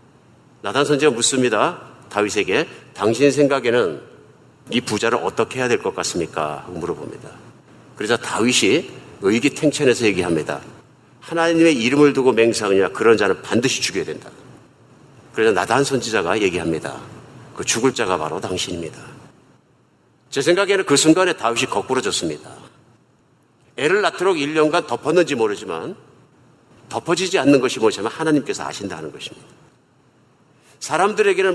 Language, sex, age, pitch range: Korean, male, 50-69, 125-160 Hz